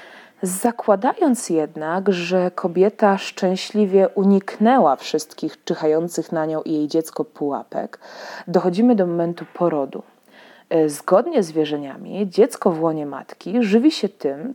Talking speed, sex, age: 115 wpm, female, 30-49